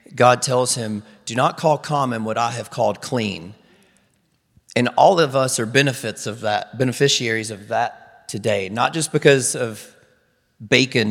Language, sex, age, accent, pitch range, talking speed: English, male, 40-59, American, 110-135 Hz, 155 wpm